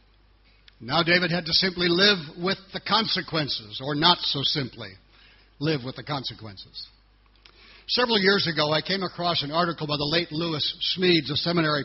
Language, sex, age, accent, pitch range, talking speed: English, male, 60-79, American, 135-185 Hz, 160 wpm